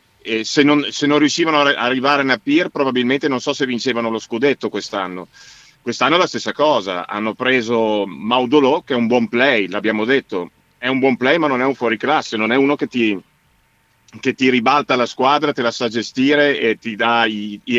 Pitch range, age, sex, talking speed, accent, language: 115-135 Hz, 40-59, male, 215 wpm, native, Italian